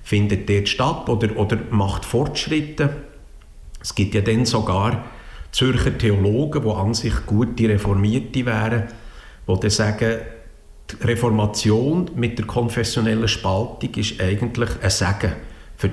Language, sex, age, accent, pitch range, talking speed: German, male, 50-69, Austrian, 100-115 Hz, 130 wpm